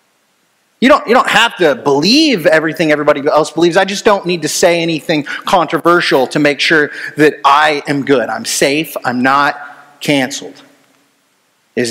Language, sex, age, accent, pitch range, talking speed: English, male, 30-49, American, 165-240 Hz, 155 wpm